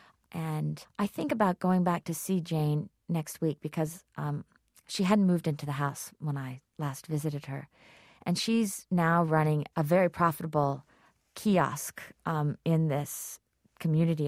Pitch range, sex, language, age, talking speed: 155-185 Hz, female, English, 40-59, 150 wpm